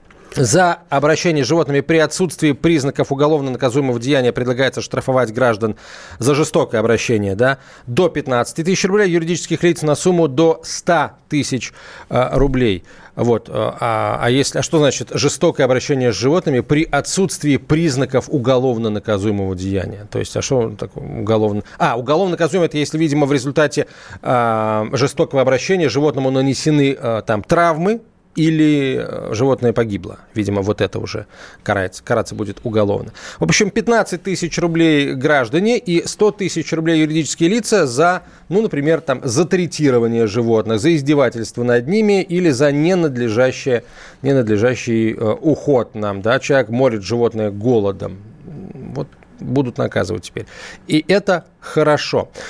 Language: Russian